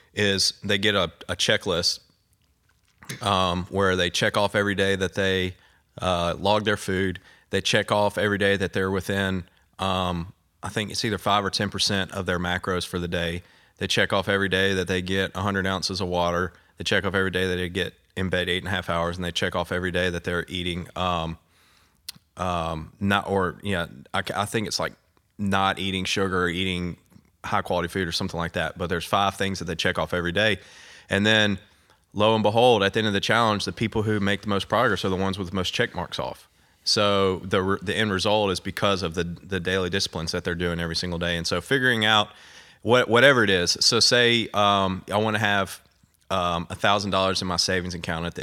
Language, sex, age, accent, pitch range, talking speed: English, male, 30-49, American, 90-100 Hz, 220 wpm